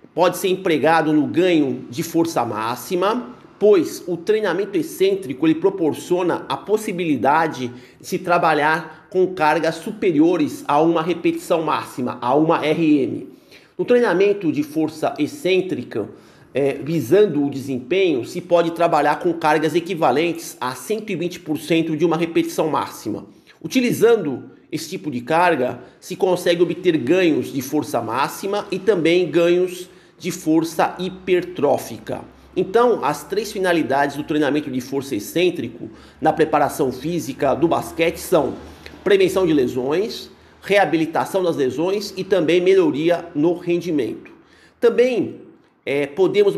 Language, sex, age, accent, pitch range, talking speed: Portuguese, male, 50-69, Brazilian, 155-190 Hz, 120 wpm